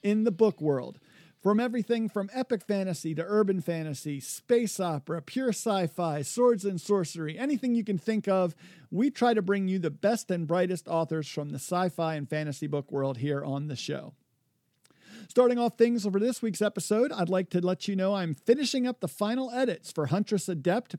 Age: 50-69